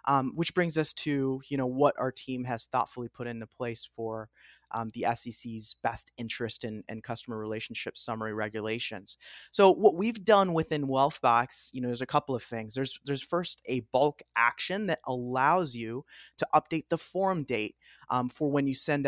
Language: English